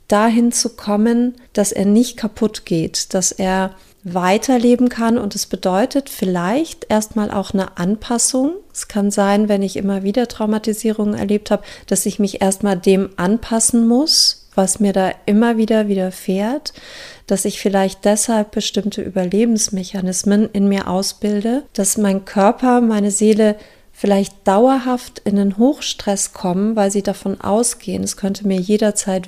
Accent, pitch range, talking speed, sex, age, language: German, 190-220 Hz, 145 wpm, female, 40-59, German